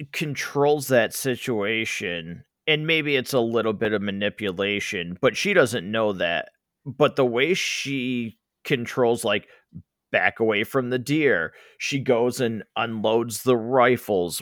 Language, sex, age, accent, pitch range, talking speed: English, male, 30-49, American, 100-135 Hz, 135 wpm